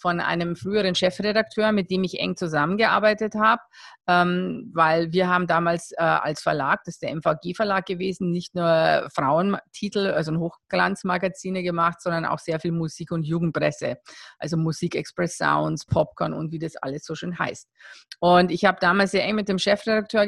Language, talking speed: German, 160 wpm